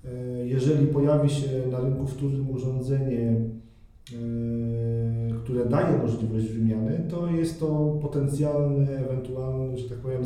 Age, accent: 40-59, native